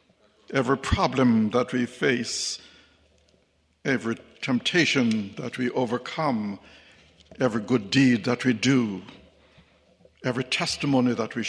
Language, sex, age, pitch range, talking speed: English, male, 60-79, 125-175 Hz, 105 wpm